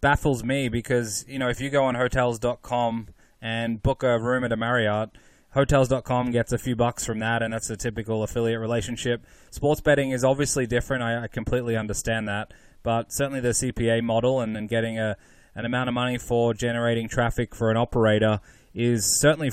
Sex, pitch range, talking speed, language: male, 115-135 Hz, 185 wpm, English